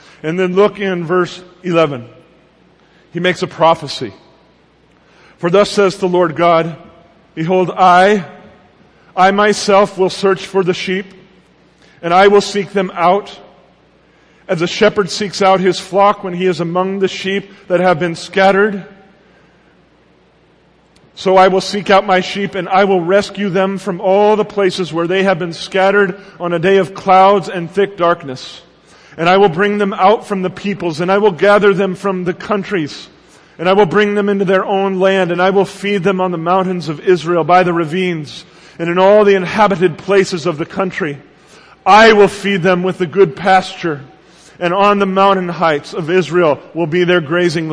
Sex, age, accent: male, 40-59, American